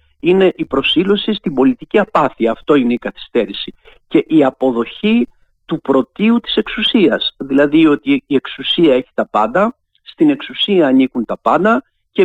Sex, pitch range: male, 130-210 Hz